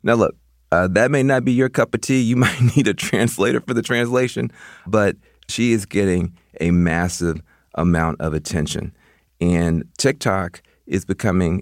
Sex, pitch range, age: male, 80-105 Hz, 40-59